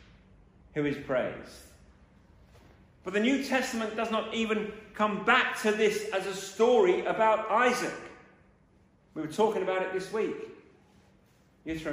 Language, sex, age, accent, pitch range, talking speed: English, male, 40-59, British, 205-255 Hz, 135 wpm